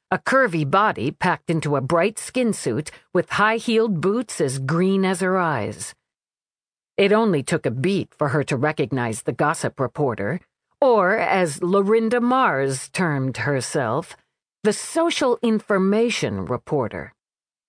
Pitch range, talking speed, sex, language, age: 155-215 Hz, 135 wpm, female, English, 50-69